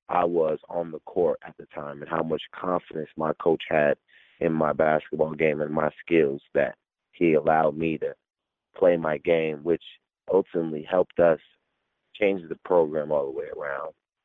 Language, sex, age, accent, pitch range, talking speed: English, male, 30-49, American, 75-90 Hz, 175 wpm